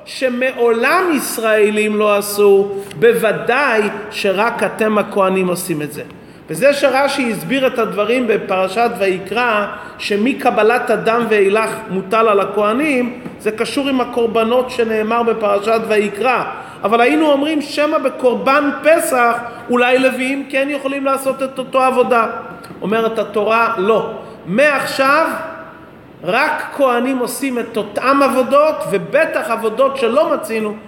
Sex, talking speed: male, 115 wpm